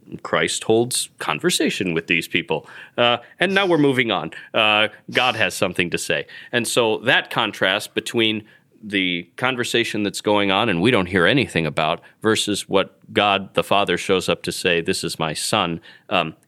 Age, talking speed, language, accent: 30-49, 175 wpm, English, American